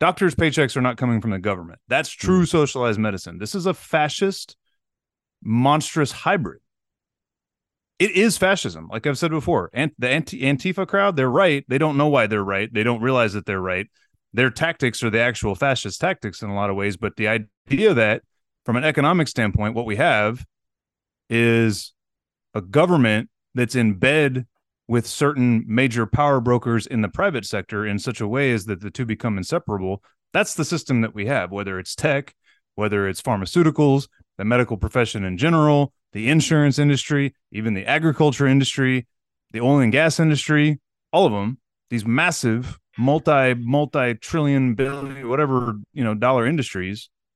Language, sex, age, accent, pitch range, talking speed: English, male, 30-49, American, 110-145 Hz, 170 wpm